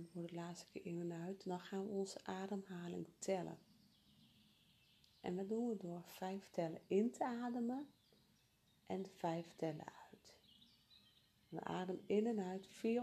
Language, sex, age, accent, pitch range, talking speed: Dutch, female, 40-59, Dutch, 170-210 Hz, 155 wpm